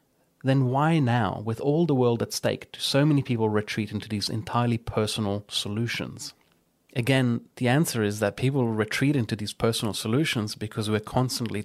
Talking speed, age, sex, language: 170 wpm, 30-49, male, English